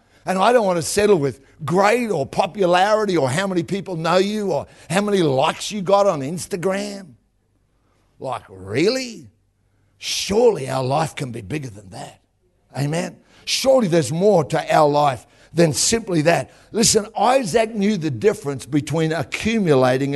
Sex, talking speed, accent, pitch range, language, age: male, 150 wpm, Australian, 120-190 Hz, English, 60-79